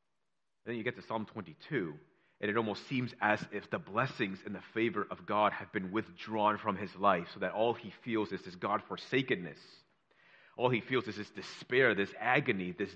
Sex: male